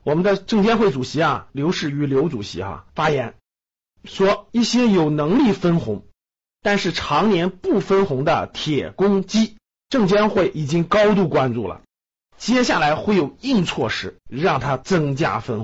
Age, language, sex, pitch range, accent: 50-69, Chinese, male, 140-210 Hz, native